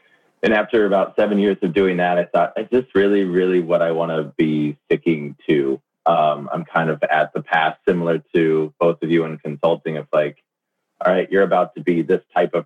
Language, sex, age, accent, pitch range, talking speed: English, male, 30-49, American, 75-85 Hz, 220 wpm